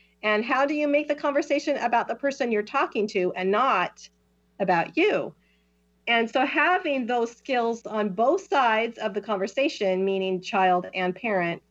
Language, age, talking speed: English, 40-59, 165 wpm